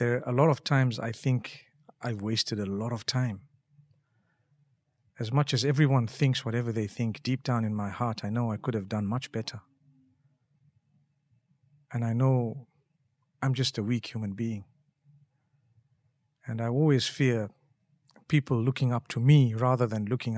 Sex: male